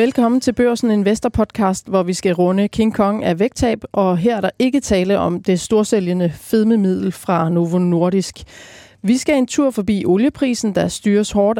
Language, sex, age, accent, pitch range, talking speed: Danish, female, 30-49, native, 190-235 Hz, 180 wpm